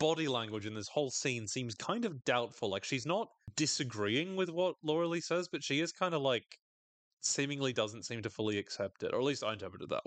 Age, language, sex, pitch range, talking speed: 30-49, English, male, 100-140 Hz, 225 wpm